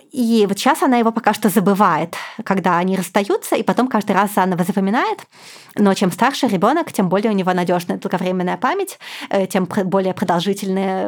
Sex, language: female, Russian